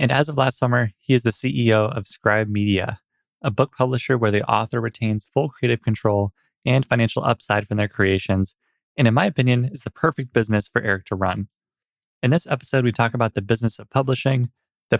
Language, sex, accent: English, male, American